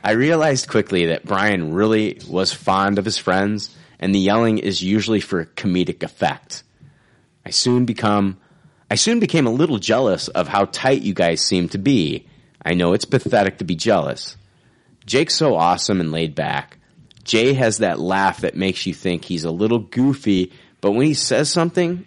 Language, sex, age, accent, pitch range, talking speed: English, male, 30-49, American, 90-125 Hz, 180 wpm